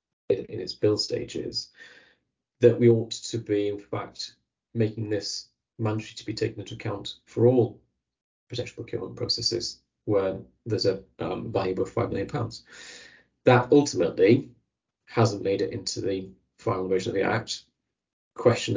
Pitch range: 100-115 Hz